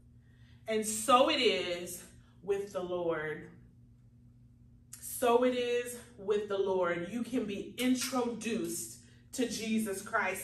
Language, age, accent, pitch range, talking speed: English, 30-49, American, 200-265 Hz, 115 wpm